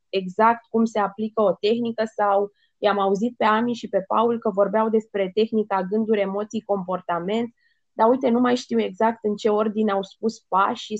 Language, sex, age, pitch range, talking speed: Romanian, female, 20-39, 195-240 Hz, 180 wpm